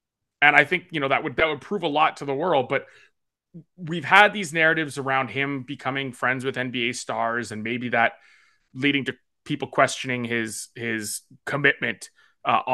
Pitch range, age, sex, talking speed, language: 130-190 Hz, 30-49, male, 175 wpm, English